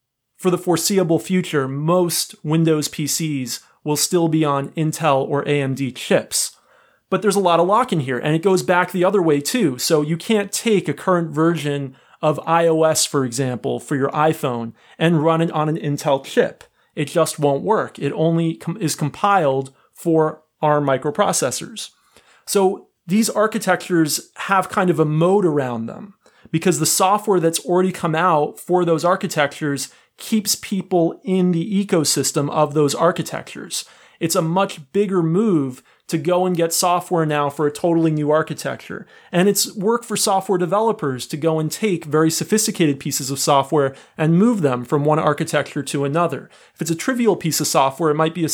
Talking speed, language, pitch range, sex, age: 175 wpm, English, 150-185 Hz, male, 30-49